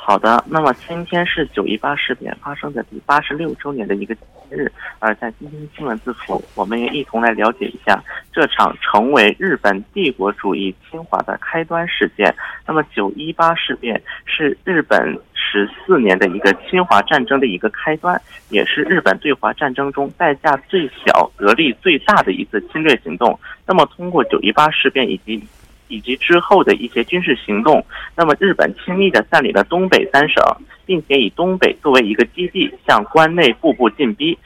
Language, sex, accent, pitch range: Korean, male, Chinese, 125-180 Hz